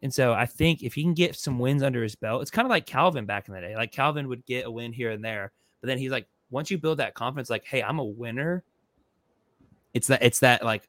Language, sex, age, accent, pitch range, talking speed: English, male, 20-39, American, 115-135 Hz, 275 wpm